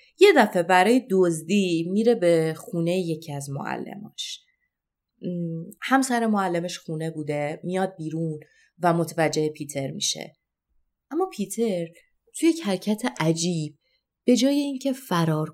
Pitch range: 160-230 Hz